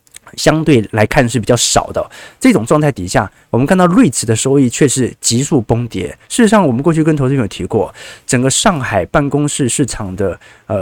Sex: male